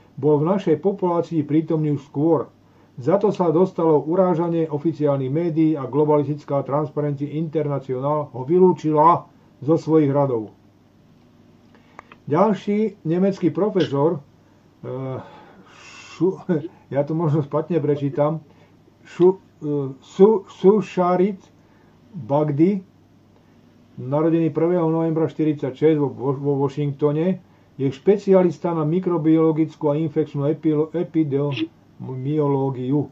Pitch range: 145-170 Hz